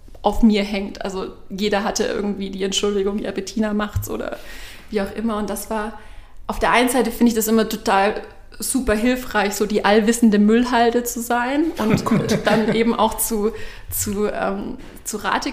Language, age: German, 30-49